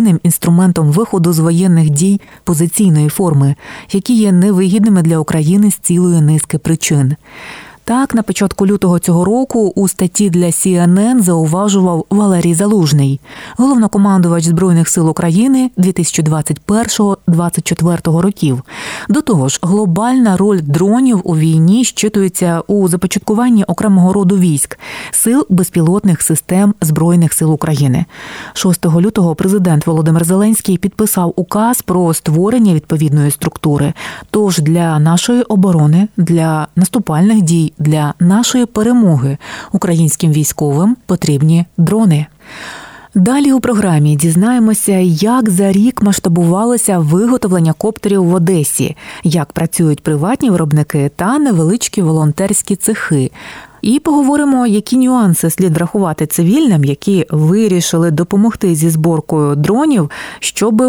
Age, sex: 30-49, female